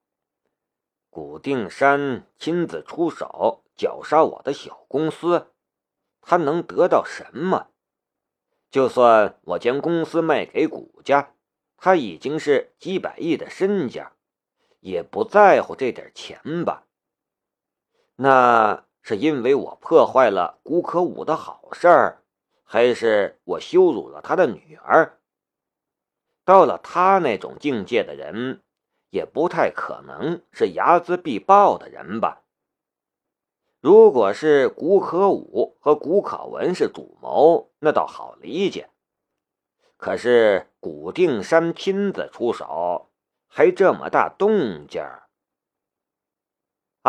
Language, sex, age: Chinese, male, 50-69